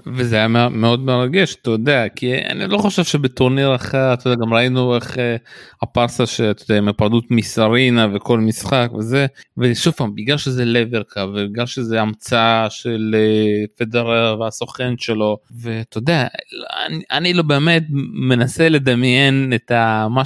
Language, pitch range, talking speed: Hebrew, 115-135 Hz, 130 wpm